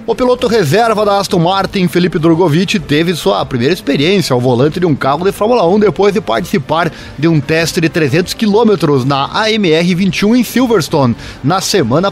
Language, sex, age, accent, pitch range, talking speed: Portuguese, male, 20-39, Brazilian, 135-180 Hz, 175 wpm